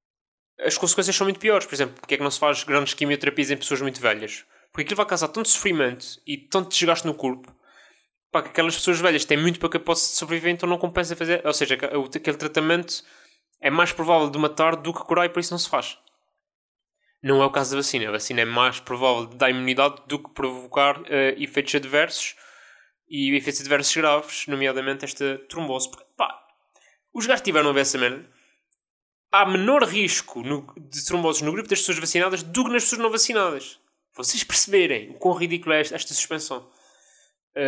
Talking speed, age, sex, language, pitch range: 195 wpm, 20-39, male, Portuguese, 140-190 Hz